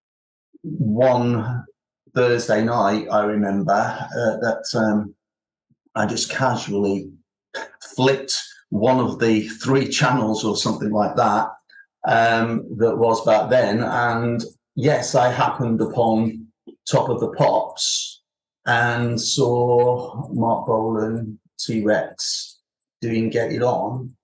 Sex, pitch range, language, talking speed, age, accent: male, 110-125 Hz, English, 110 wpm, 40-59, British